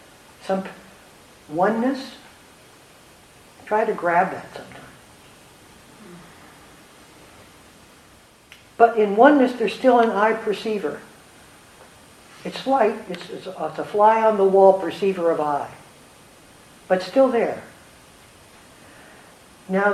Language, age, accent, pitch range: English, 60-79, American, 175-220 Hz